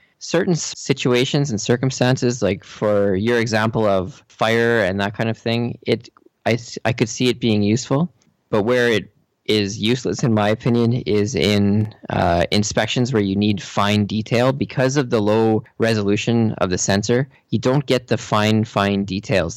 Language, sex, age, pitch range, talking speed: English, male, 20-39, 100-120 Hz, 170 wpm